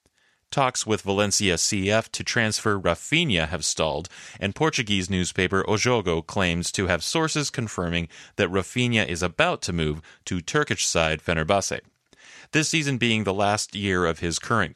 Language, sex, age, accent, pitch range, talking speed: English, male, 30-49, American, 85-110 Hz, 150 wpm